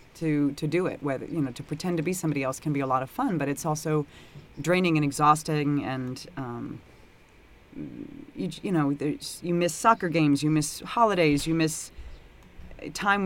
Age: 30-49